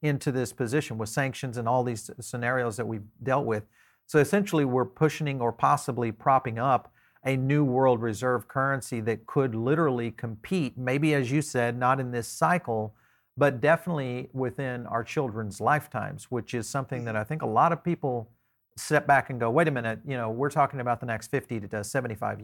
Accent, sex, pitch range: American, male, 115-140 Hz